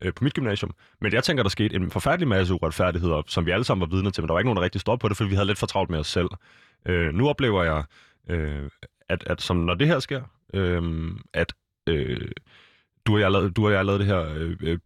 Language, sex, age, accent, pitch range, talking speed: Danish, male, 20-39, native, 85-105 Hz, 250 wpm